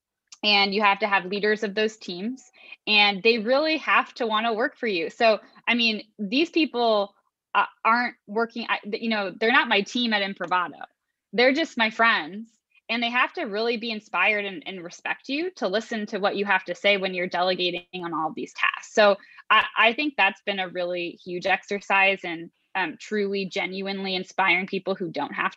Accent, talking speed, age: American, 200 wpm, 20-39